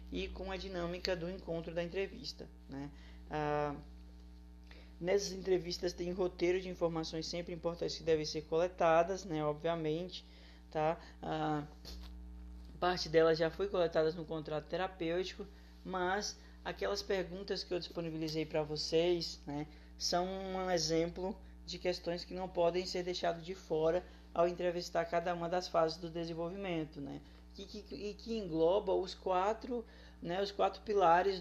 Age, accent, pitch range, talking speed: 20-39, Brazilian, 155-185 Hz, 135 wpm